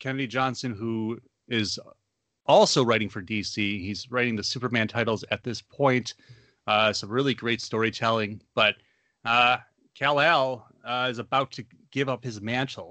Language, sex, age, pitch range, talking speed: English, male, 30-49, 110-135 Hz, 145 wpm